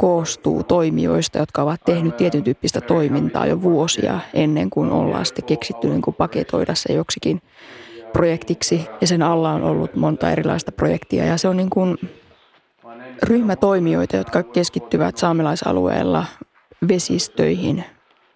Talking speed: 125 wpm